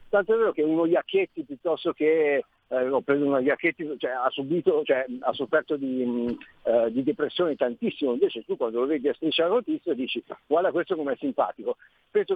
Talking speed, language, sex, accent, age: 160 wpm, Italian, male, native, 50-69